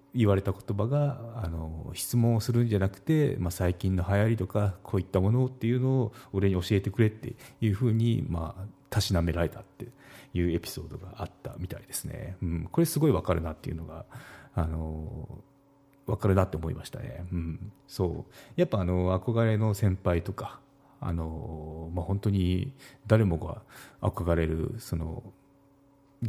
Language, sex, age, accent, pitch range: Japanese, male, 40-59, native, 85-120 Hz